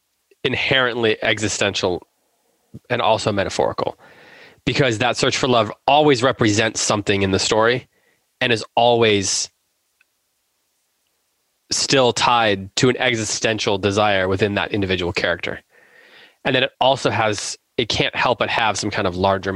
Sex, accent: male, American